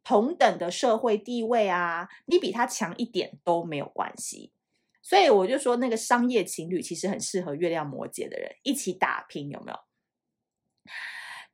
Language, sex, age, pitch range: Chinese, female, 30-49, 170-235 Hz